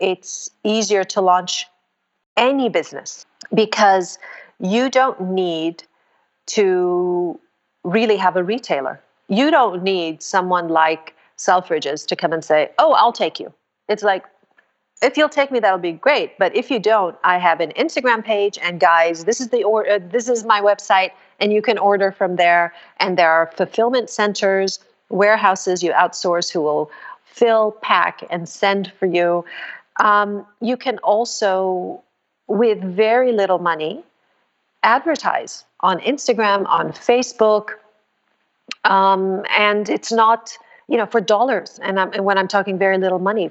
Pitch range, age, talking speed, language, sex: 185-230 Hz, 40-59, 145 wpm, English, female